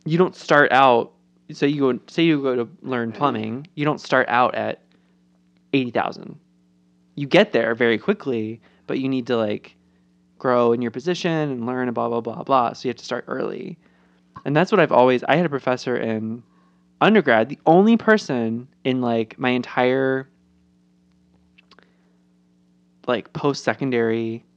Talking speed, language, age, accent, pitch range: 165 wpm, English, 20-39, American, 110-150 Hz